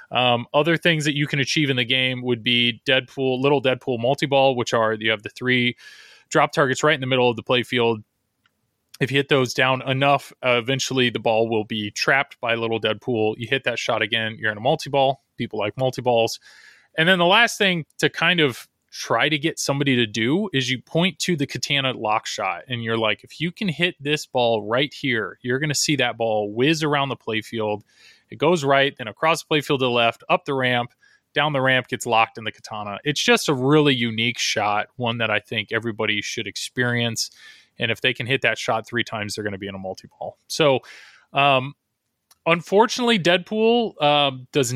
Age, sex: 20-39, male